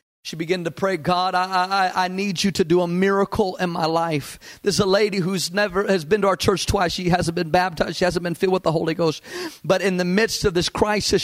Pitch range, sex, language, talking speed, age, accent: 185-215 Hz, male, English, 255 wpm, 40-59, American